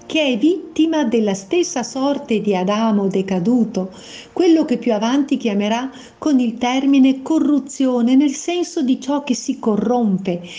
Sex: female